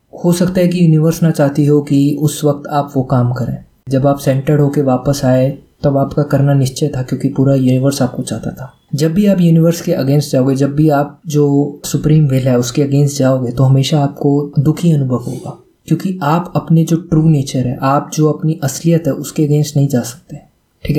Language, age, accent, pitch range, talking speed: Hindi, 20-39, native, 135-155 Hz, 210 wpm